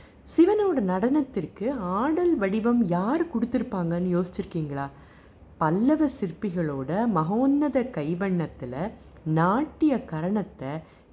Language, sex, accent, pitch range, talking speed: Tamil, female, native, 155-225 Hz, 70 wpm